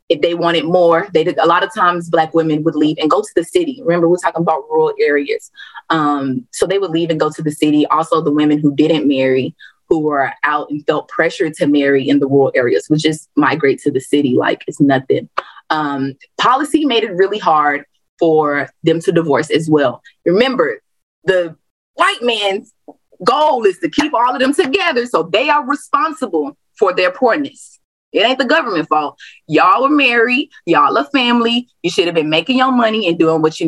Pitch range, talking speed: 150-255 Hz, 205 wpm